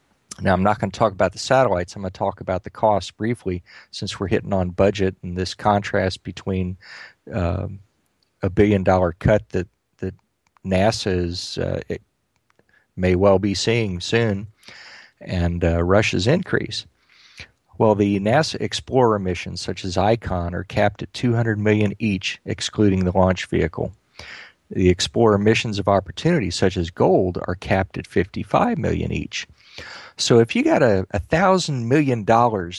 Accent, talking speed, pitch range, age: American, 155 wpm, 90-110 Hz, 40-59